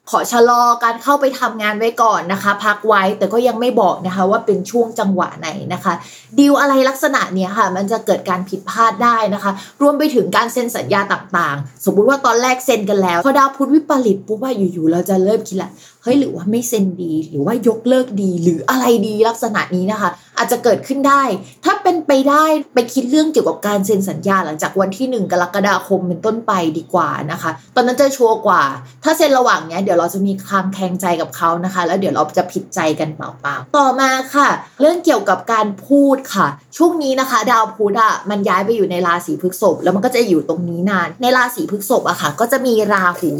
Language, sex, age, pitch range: Thai, female, 20-39, 190-255 Hz